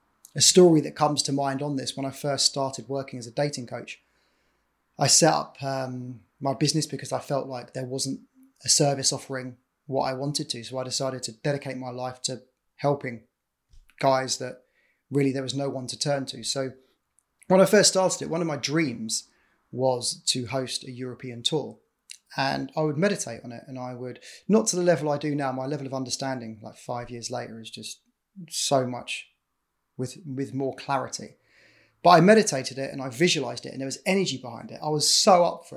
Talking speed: 205 wpm